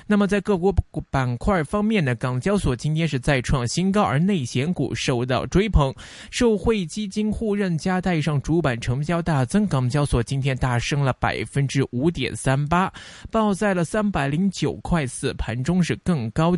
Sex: male